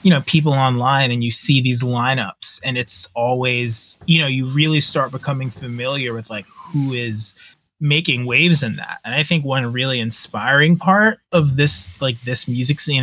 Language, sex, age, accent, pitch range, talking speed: English, male, 20-39, American, 115-145 Hz, 185 wpm